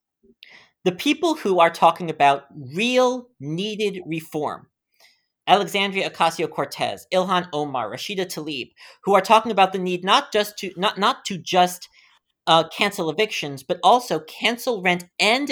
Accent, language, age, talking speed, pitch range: American, English, 40-59, 130 wpm, 165-225 Hz